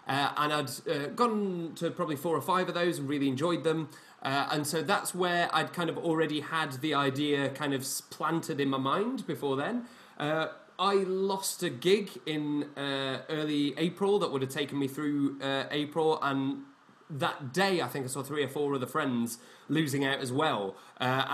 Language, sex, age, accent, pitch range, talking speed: English, male, 20-39, British, 140-180 Hz, 200 wpm